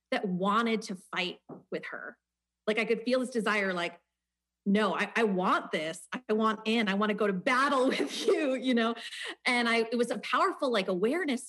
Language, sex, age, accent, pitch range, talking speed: English, female, 30-49, American, 185-245 Hz, 200 wpm